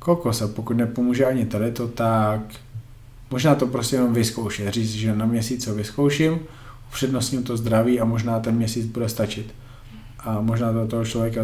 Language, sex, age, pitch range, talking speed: Slovak, male, 20-39, 105-120 Hz, 170 wpm